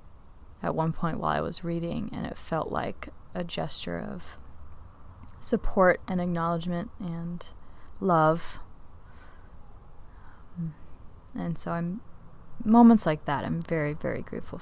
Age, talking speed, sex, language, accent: 20-39, 120 wpm, female, English, American